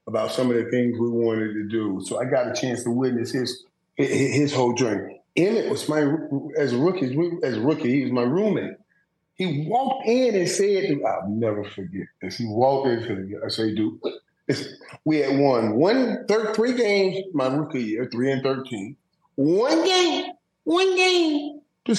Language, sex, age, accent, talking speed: English, male, 30-49, American, 190 wpm